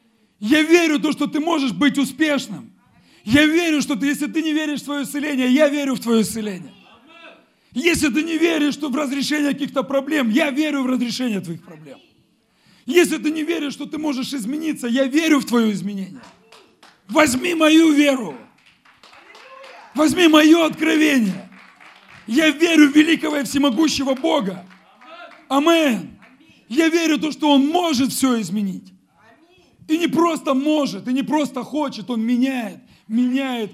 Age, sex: 40-59, male